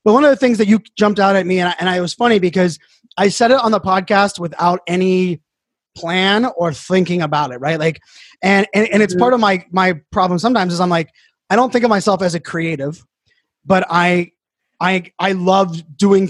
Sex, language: male, English